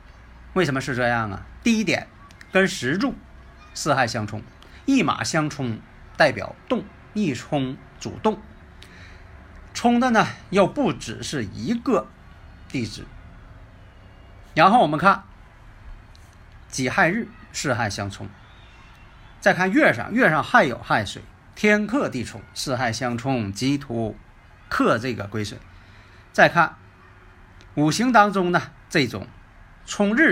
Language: Chinese